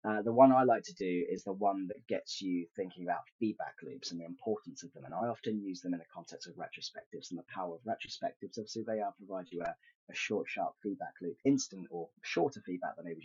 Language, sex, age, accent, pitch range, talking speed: English, male, 30-49, British, 95-125 Hz, 245 wpm